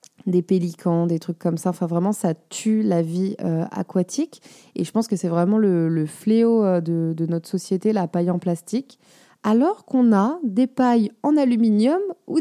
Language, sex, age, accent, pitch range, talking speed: French, female, 20-39, French, 175-230 Hz, 190 wpm